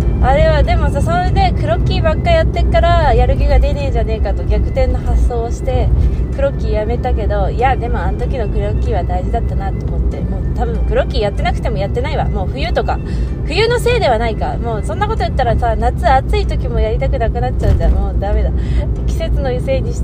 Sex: female